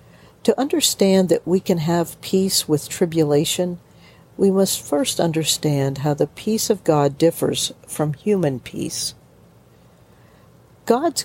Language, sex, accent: English, female, American